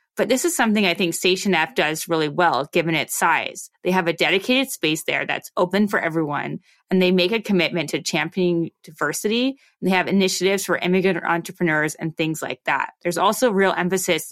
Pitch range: 165-210 Hz